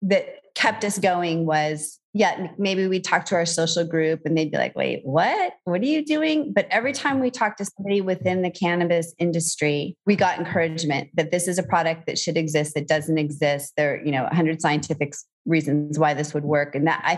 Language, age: English, 30-49